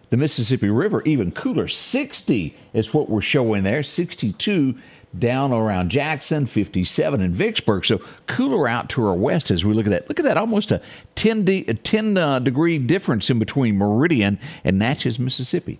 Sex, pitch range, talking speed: male, 100-135 Hz, 180 wpm